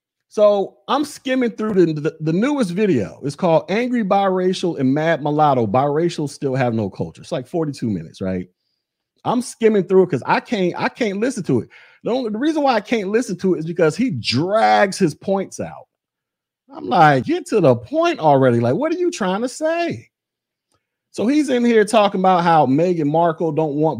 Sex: male